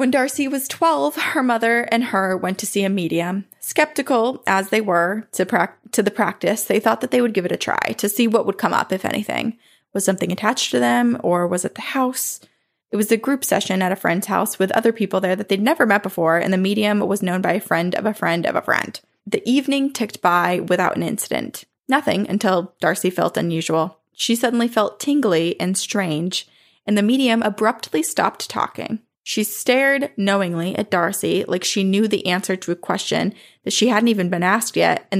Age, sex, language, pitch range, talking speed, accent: 20-39, female, English, 185-230 Hz, 215 wpm, American